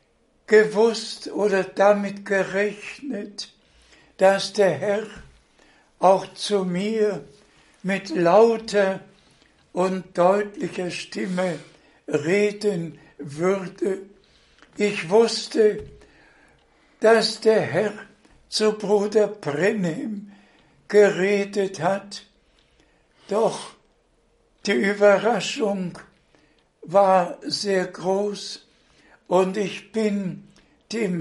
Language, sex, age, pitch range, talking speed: German, male, 60-79, 185-205 Hz, 70 wpm